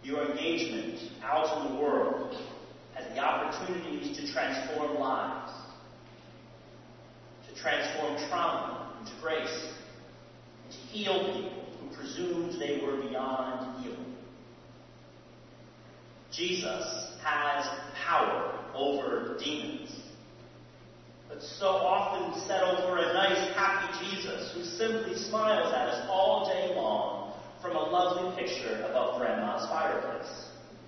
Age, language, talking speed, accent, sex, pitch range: 40-59, English, 110 wpm, American, male, 150-195 Hz